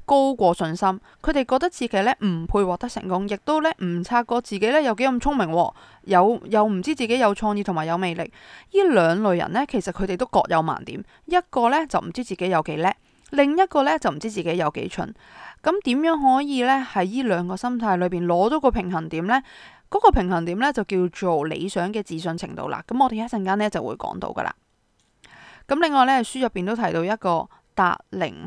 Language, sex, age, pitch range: Chinese, female, 20-39, 180-255 Hz